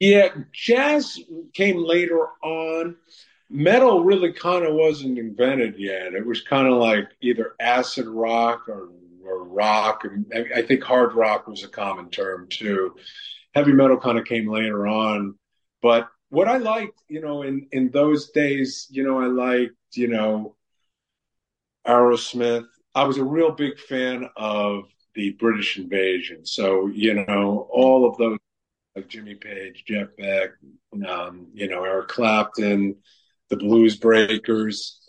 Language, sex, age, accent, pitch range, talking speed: English, male, 50-69, American, 100-135 Hz, 145 wpm